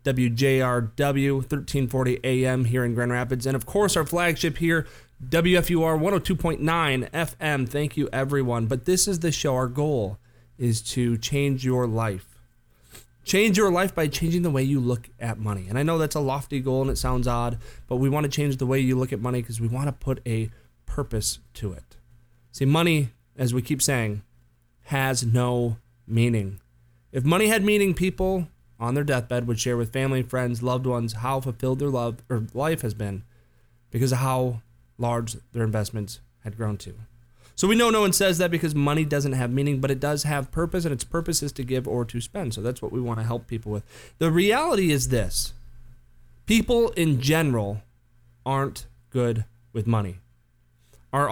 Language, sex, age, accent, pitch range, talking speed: English, male, 30-49, American, 120-145 Hz, 190 wpm